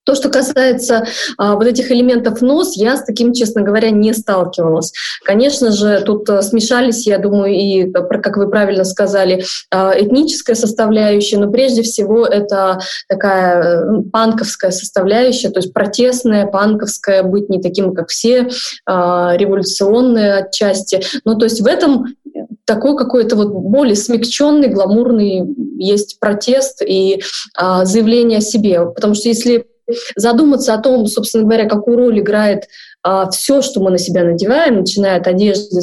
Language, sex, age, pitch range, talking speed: Russian, female, 20-39, 195-240 Hz, 135 wpm